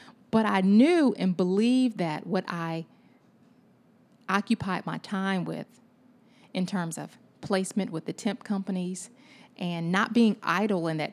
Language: English